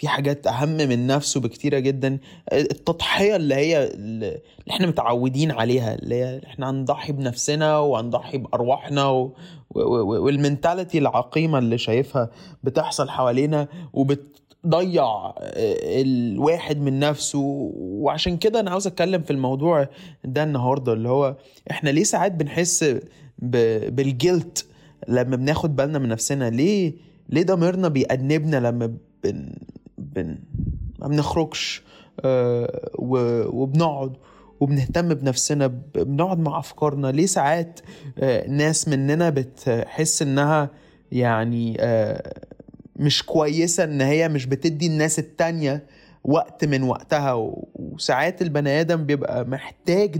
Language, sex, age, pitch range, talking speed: Arabic, male, 20-39, 135-165 Hz, 115 wpm